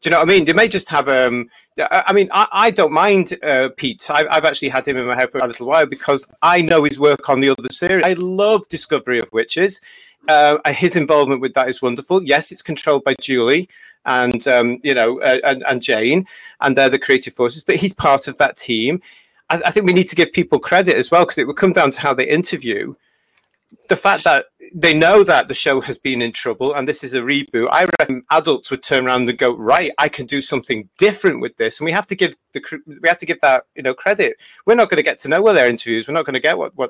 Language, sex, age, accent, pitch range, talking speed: English, male, 40-59, British, 135-180 Hz, 260 wpm